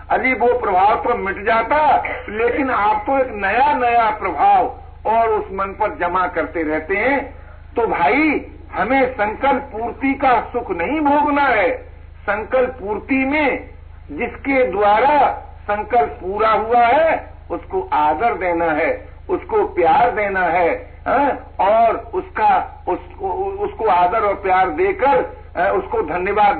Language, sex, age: Hindi, male, 60-79